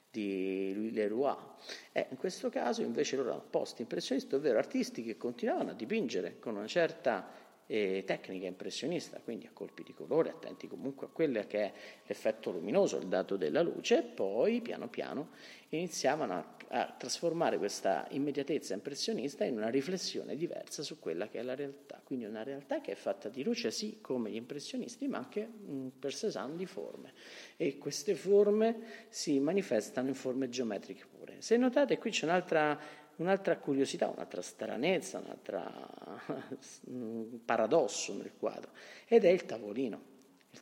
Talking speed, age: 160 wpm, 50-69